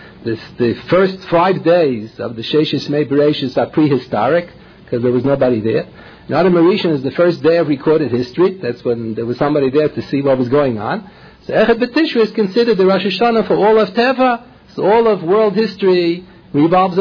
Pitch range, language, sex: 145-190 Hz, English, male